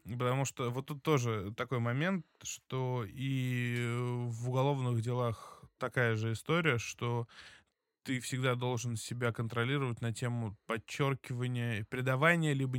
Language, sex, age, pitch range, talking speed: Russian, male, 20-39, 120-150 Hz, 120 wpm